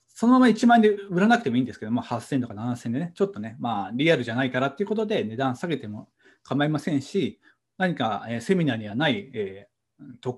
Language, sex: Japanese, male